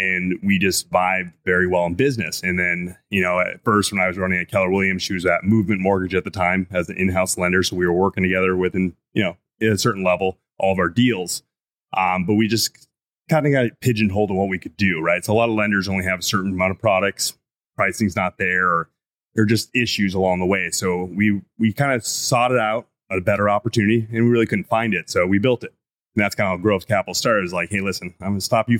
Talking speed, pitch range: 260 wpm, 95-110 Hz